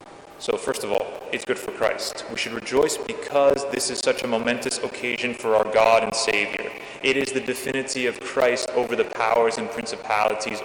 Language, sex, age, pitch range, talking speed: English, male, 30-49, 110-135 Hz, 190 wpm